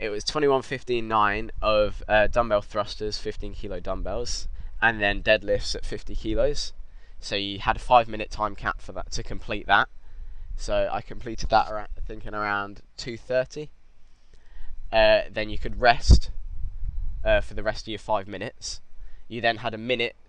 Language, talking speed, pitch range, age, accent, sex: English, 175 wpm, 100-115 Hz, 10-29, British, male